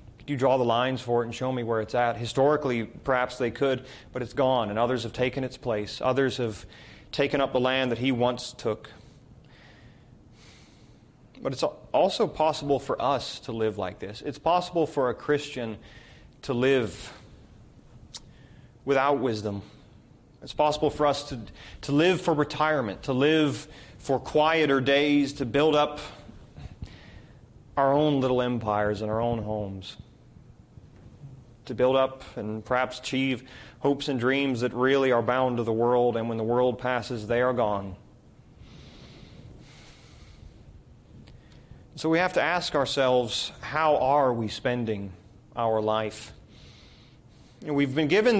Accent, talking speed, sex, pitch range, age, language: American, 145 wpm, male, 115-145 Hz, 30-49, English